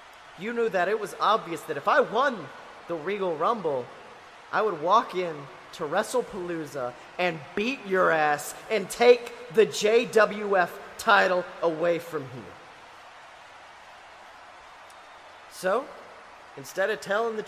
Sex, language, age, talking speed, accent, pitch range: male, English, 30-49, 125 wpm, American, 165-225 Hz